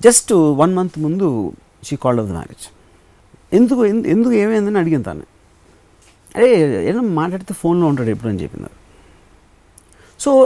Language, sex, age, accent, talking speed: Telugu, male, 60-79, native, 145 wpm